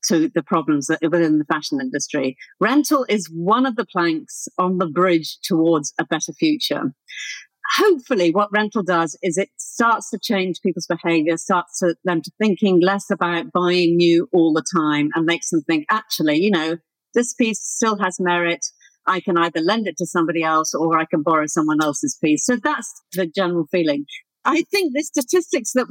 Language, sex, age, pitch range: English, female, 50-69, 170-245 Hz